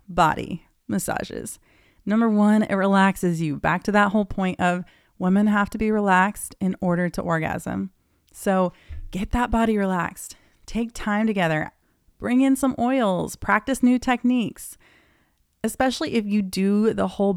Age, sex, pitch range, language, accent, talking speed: 30-49, female, 175-220 Hz, English, American, 150 wpm